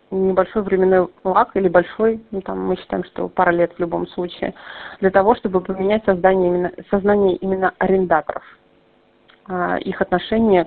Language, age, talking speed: Russian, 30-49, 145 wpm